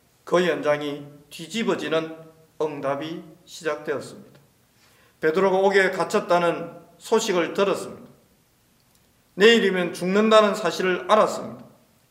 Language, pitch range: Korean, 145-200 Hz